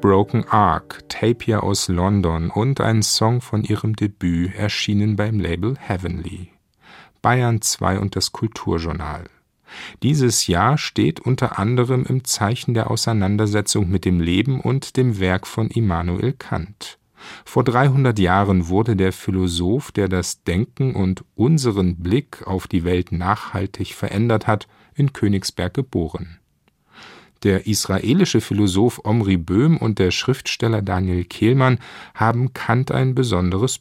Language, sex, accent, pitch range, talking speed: German, male, German, 95-115 Hz, 130 wpm